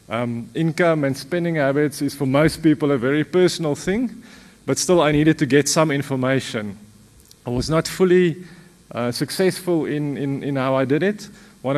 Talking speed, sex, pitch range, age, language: 180 wpm, male, 130-165 Hz, 30-49, English